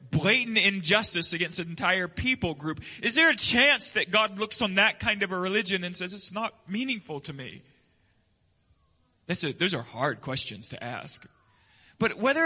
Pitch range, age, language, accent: 135-210 Hz, 30-49, English, American